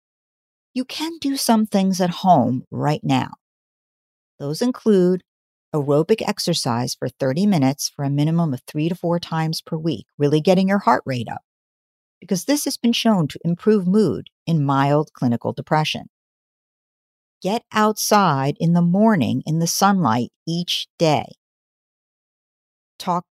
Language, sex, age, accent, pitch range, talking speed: English, female, 50-69, American, 145-205 Hz, 140 wpm